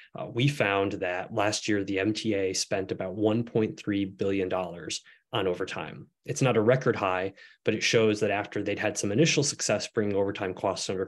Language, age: English, 20-39